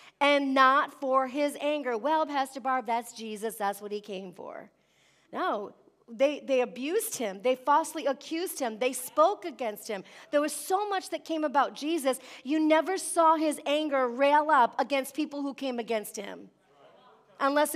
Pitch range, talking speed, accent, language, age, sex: 230-295 Hz, 170 wpm, American, English, 40-59, female